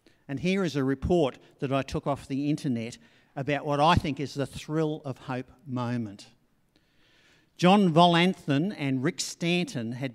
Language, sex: English, male